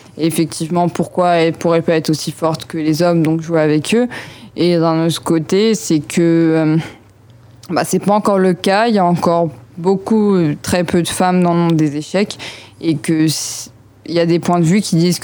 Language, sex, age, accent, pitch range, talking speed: French, female, 20-39, French, 165-180 Hz, 210 wpm